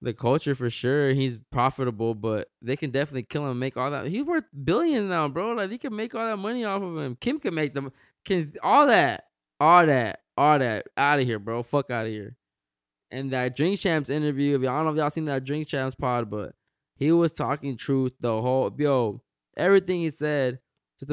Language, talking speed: English, 220 wpm